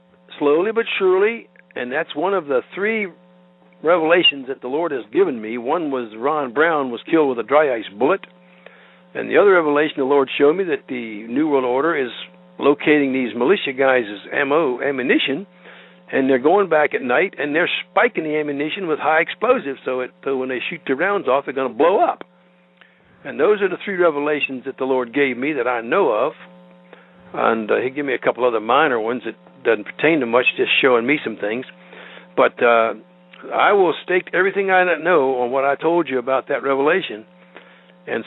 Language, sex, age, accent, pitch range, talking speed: English, male, 60-79, American, 115-160 Hz, 200 wpm